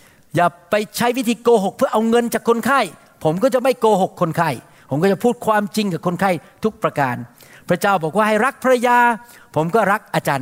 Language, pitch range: Thai, 180-235 Hz